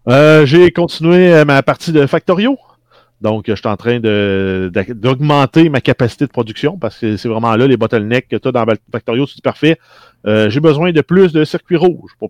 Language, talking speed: French, 200 wpm